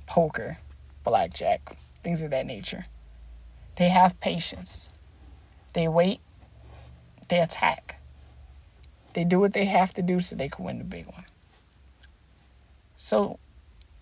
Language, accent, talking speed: English, American, 120 wpm